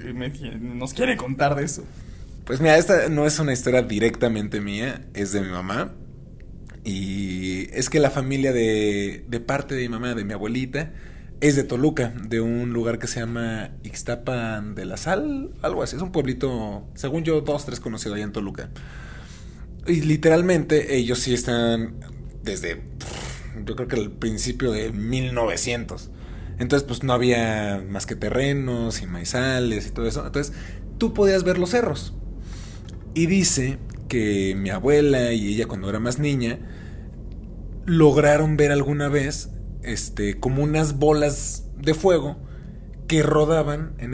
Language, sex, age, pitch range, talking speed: Spanish, male, 20-39, 110-145 Hz, 155 wpm